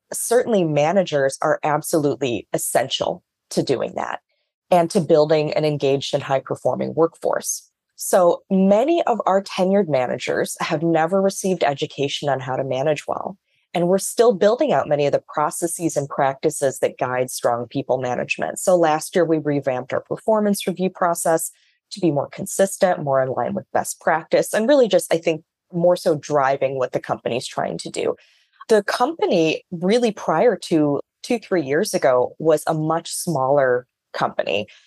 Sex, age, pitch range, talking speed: female, 20-39, 145-190 Hz, 160 wpm